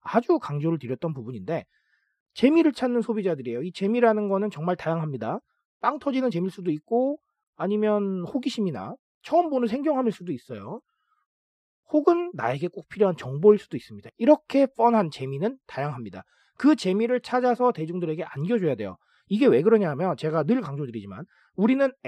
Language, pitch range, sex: Korean, 160-235 Hz, male